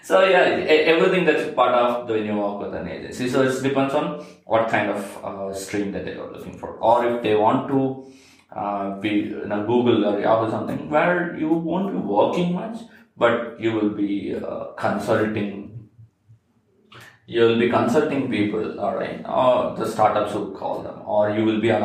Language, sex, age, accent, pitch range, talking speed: English, male, 20-39, Indian, 105-130 Hz, 185 wpm